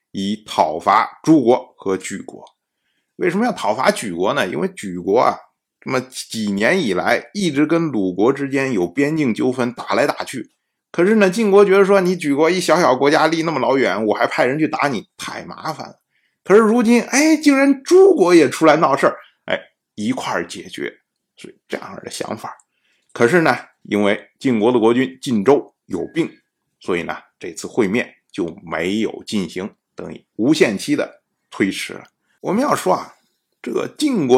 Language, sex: Chinese, male